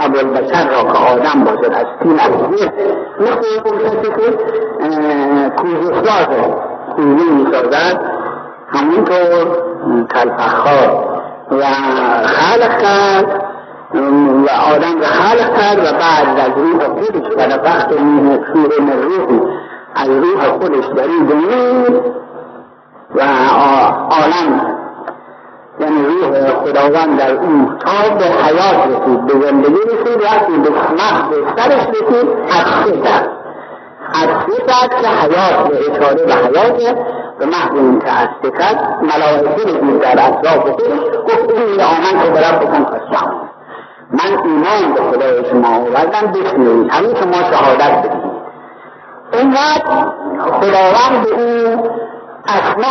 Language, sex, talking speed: Persian, male, 65 wpm